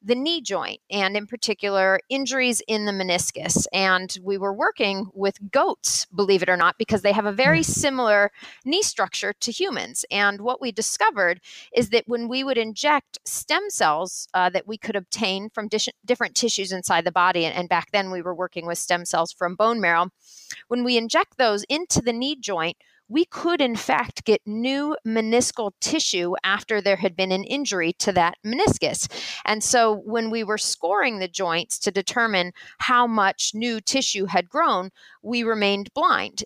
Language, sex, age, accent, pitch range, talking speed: English, female, 30-49, American, 185-235 Hz, 180 wpm